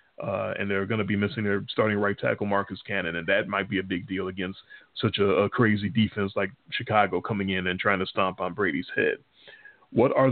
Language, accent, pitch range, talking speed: English, American, 105-130 Hz, 225 wpm